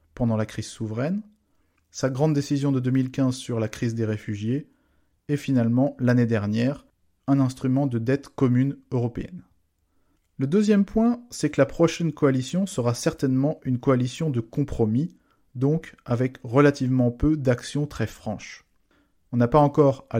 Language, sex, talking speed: English, male, 150 wpm